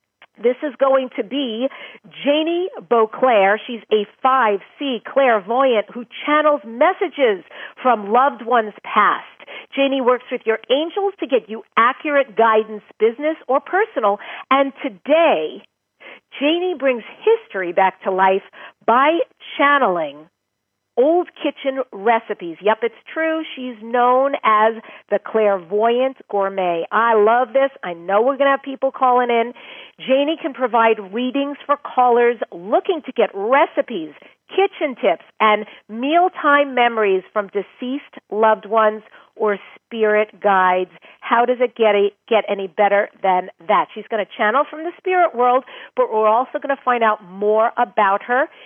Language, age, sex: English, 50-69, female